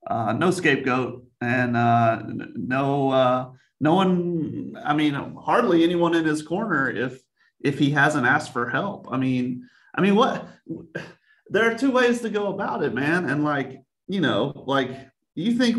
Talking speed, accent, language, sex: 165 wpm, American, English, male